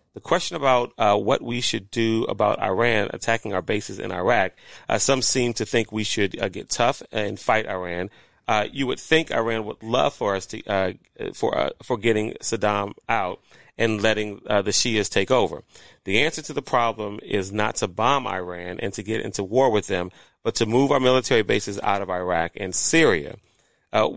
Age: 30-49